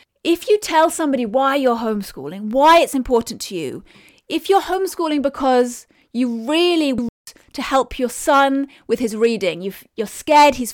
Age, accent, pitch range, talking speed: 30-49, British, 240-305 Hz, 160 wpm